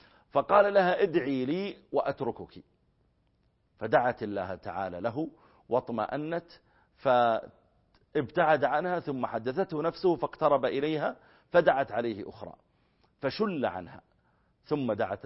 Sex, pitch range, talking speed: male, 90-135 Hz, 95 wpm